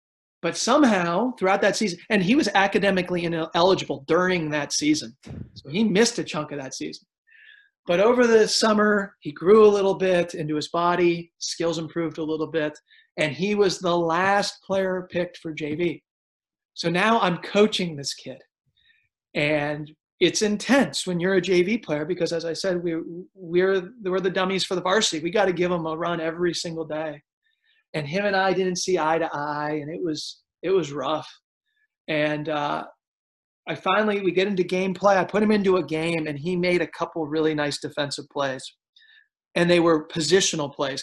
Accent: American